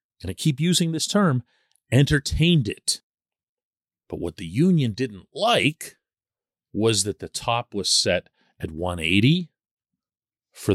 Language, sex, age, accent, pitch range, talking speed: English, male, 40-59, American, 110-175 Hz, 130 wpm